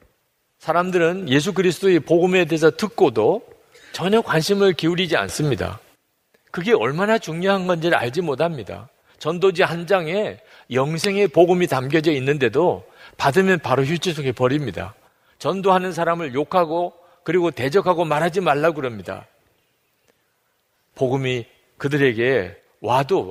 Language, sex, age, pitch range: Korean, male, 40-59, 130-180 Hz